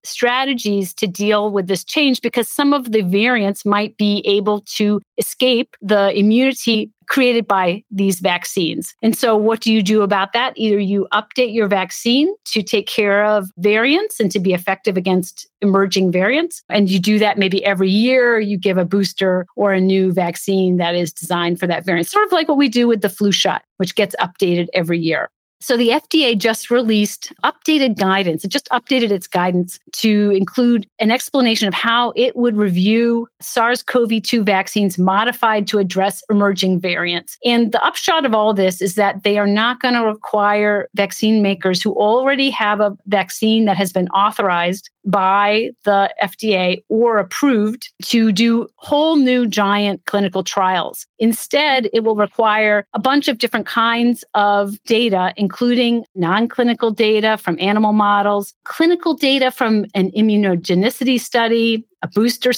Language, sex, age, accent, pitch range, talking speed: English, female, 40-59, American, 195-235 Hz, 165 wpm